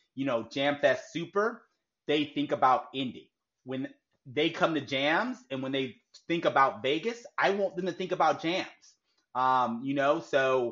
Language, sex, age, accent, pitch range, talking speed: English, male, 30-49, American, 125-155 Hz, 170 wpm